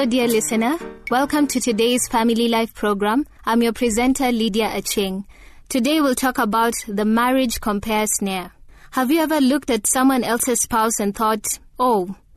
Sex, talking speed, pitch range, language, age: female, 160 wpm, 205-250 Hz, English, 20-39